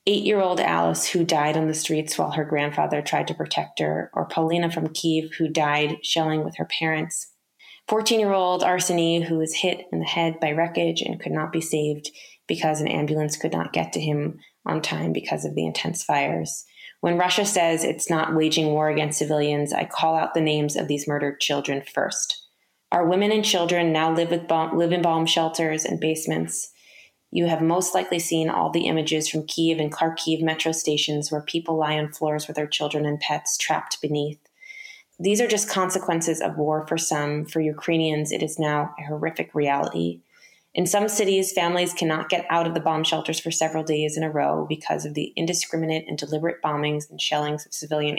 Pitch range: 150-170 Hz